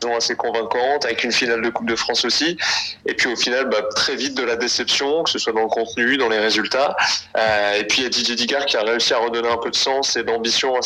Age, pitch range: 20-39, 115-140 Hz